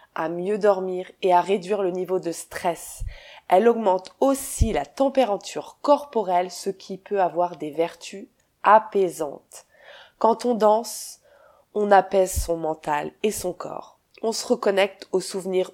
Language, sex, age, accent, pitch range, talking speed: French, female, 20-39, French, 180-225 Hz, 145 wpm